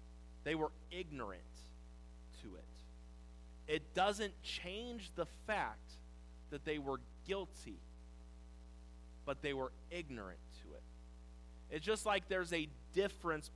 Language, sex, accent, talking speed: English, male, American, 115 wpm